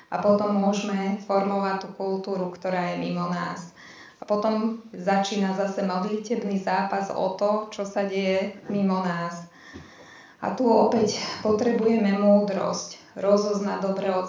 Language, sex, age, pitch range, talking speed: Slovak, female, 20-39, 185-205 Hz, 130 wpm